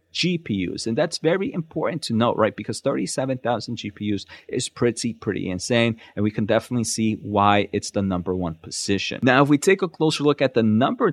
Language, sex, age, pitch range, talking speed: English, male, 30-49, 105-130 Hz, 200 wpm